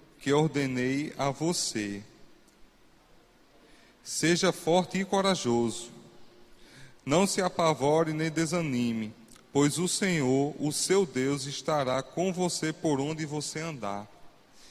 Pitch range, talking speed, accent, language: 135-170 Hz, 105 wpm, Brazilian, Portuguese